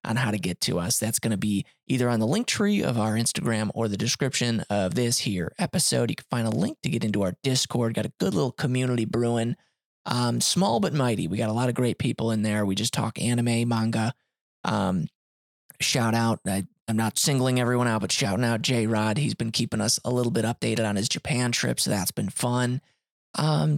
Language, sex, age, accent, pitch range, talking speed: English, male, 20-39, American, 110-145 Hz, 220 wpm